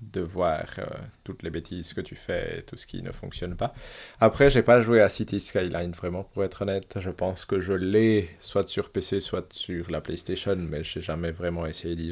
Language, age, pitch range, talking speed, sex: French, 20-39, 95-115 Hz, 225 wpm, male